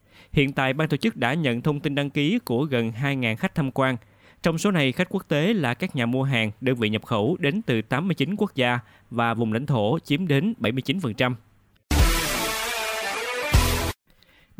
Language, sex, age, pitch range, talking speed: Vietnamese, male, 20-39, 120-150 Hz, 180 wpm